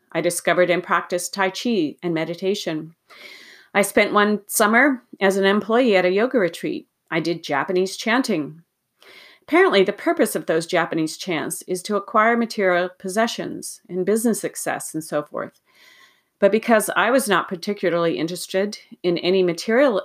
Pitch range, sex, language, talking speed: 170-225 Hz, female, English, 155 wpm